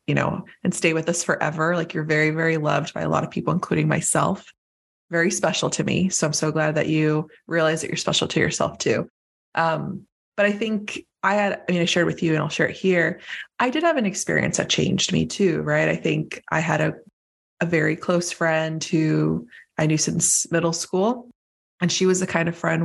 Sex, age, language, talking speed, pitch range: female, 20-39, English, 225 wpm, 155-185 Hz